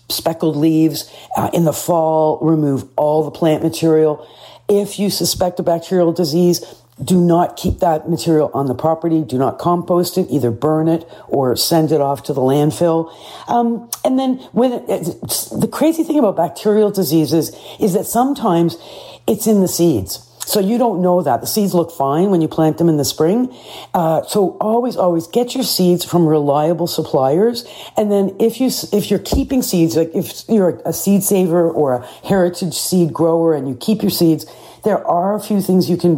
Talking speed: 190 wpm